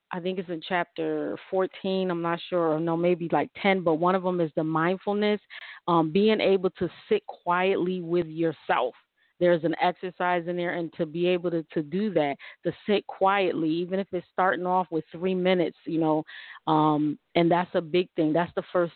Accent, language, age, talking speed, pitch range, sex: American, English, 30-49, 205 wpm, 160-180 Hz, female